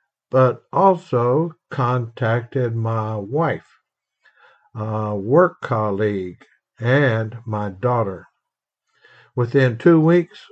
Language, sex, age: English, male, 60-79